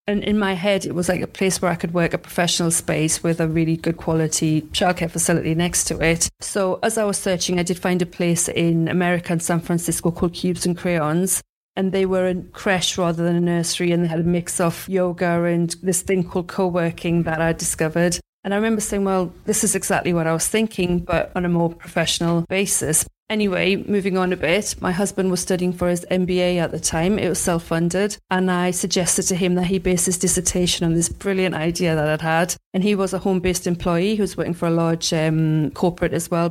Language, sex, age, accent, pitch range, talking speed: English, female, 40-59, British, 170-185 Hz, 225 wpm